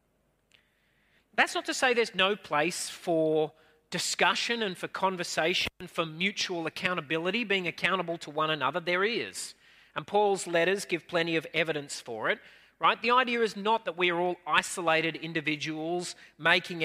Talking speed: 155 wpm